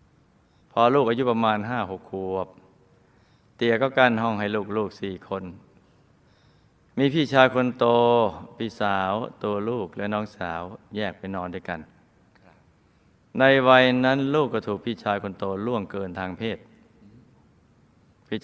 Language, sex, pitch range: Thai, male, 100-125 Hz